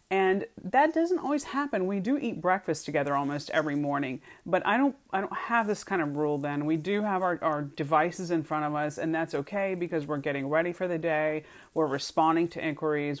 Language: English